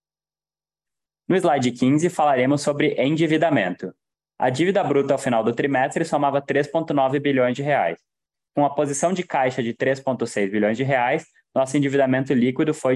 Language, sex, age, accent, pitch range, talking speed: Portuguese, male, 20-39, Brazilian, 125-150 Hz, 155 wpm